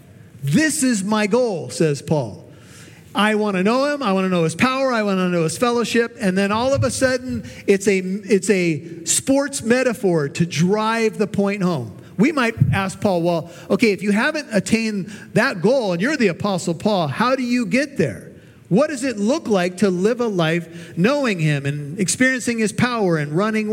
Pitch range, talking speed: 160-205 Hz, 200 wpm